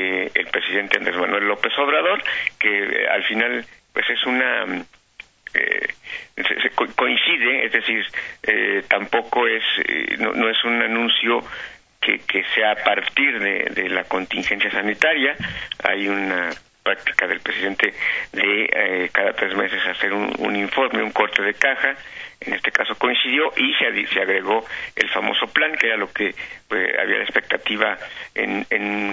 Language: Spanish